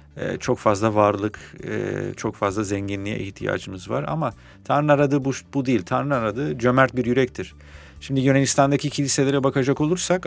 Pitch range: 100-135 Hz